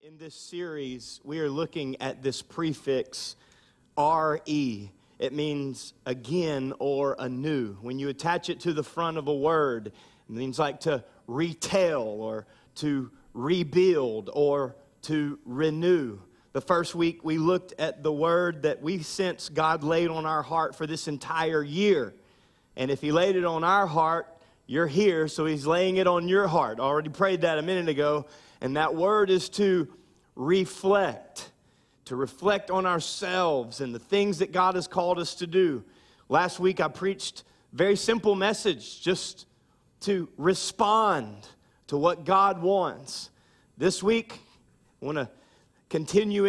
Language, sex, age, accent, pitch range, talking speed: English, male, 30-49, American, 150-195 Hz, 160 wpm